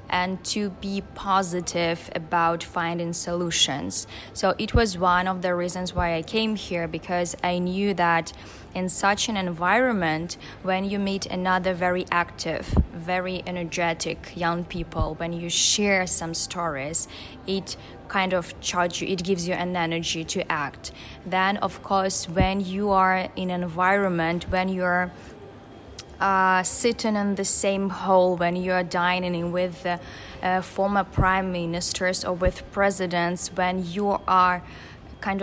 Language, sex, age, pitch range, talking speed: English, female, 10-29, 175-195 Hz, 145 wpm